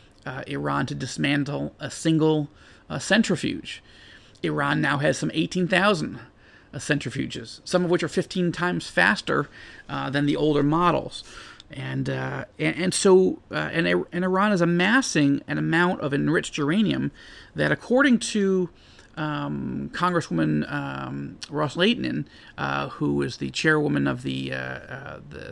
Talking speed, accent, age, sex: 145 wpm, American, 40-59, male